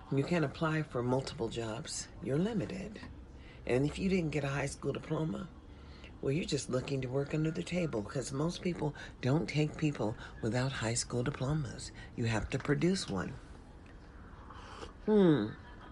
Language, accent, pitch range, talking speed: English, American, 105-145 Hz, 160 wpm